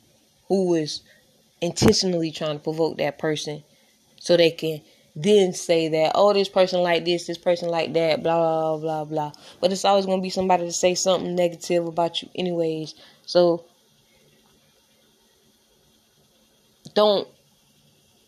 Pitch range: 165-200 Hz